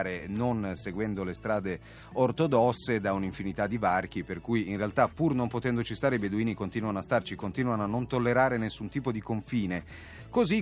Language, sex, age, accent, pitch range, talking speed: Italian, male, 30-49, native, 95-120 Hz, 175 wpm